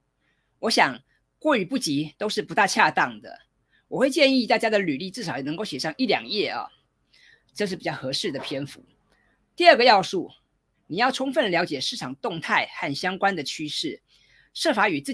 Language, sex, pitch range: Chinese, female, 155-250 Hz